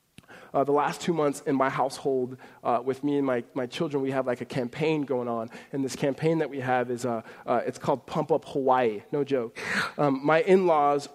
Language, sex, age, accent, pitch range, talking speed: English, male, 20-39, American, 135-195 Hz, 220 wpm